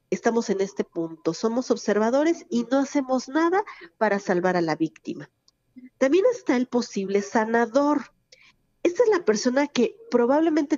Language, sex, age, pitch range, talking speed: Spanish, female, 40-59, 180-255 Hz, 145 wpm